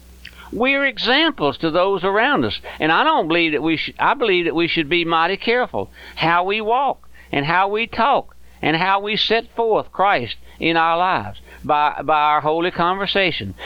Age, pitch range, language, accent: 60-79, 150-195 Hz, English, American